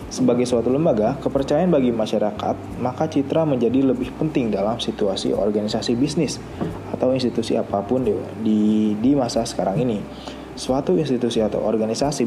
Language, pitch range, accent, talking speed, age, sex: Indonesian, 105-130 Hz, native, 130 wpm, 20-39, male